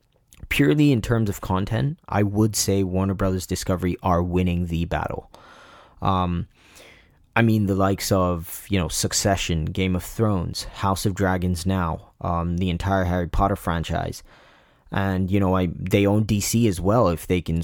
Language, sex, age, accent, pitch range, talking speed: English, male, 20-39, American, 85-105 Hz, 165 wpm